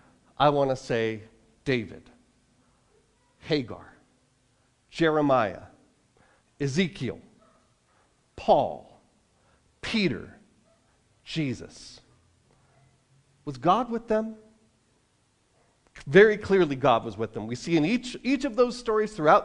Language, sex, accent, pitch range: English, male, American, 135-200 Hz